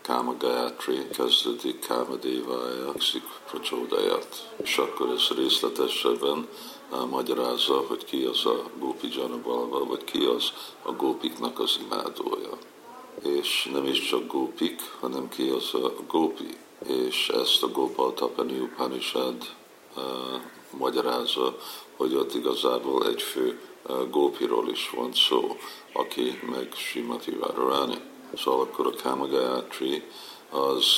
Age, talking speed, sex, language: 50-69, 115 wpm, male, Hungarian